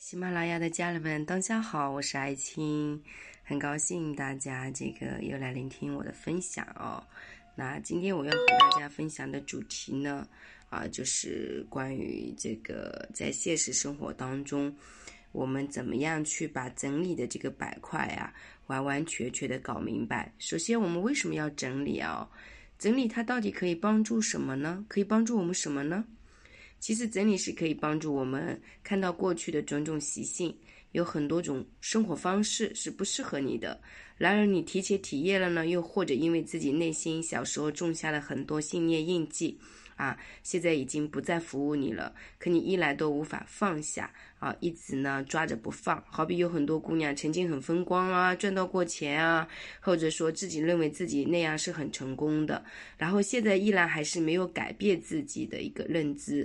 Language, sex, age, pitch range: Chinese, female, 20-39, 150-190 Hz